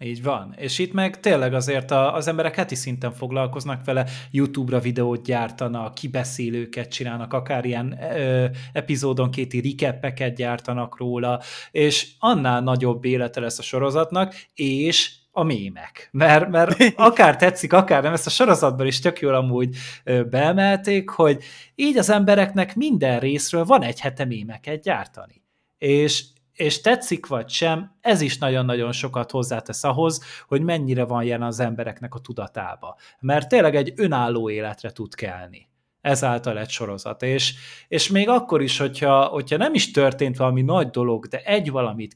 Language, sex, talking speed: Hungarian, male, 150 wpm